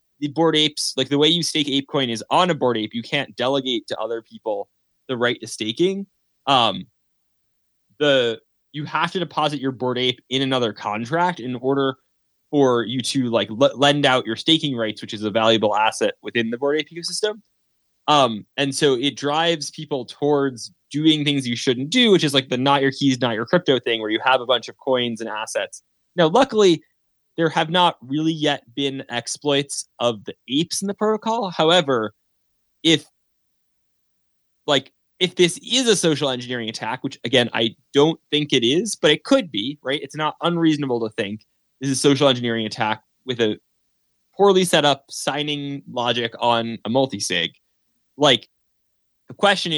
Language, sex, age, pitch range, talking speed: English, male, 20-39, 120-160 Hz, 185 wpm